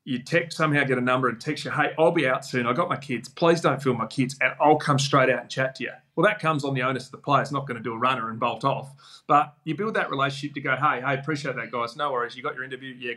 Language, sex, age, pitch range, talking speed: English, male, 30-49, 130-165 Hz, 320 wpm